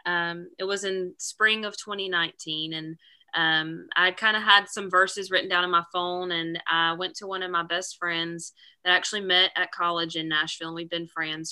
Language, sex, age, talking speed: English, female, 20-39, 215 wpm